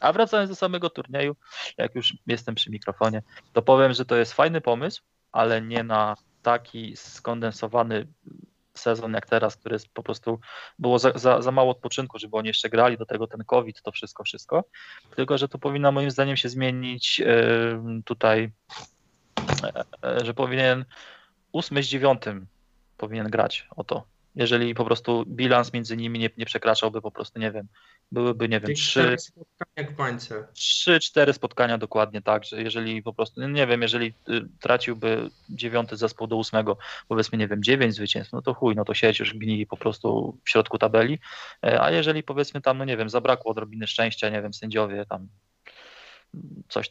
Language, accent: Polish, native